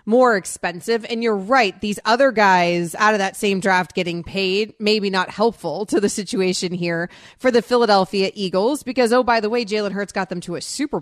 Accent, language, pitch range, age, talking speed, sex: American, English, 185-235 Hz, 30-49, 205 wpm, female